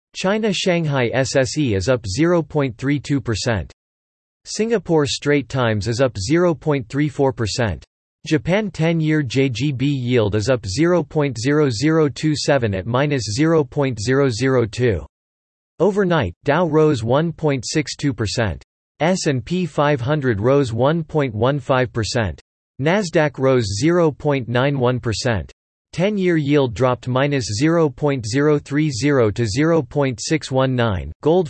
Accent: American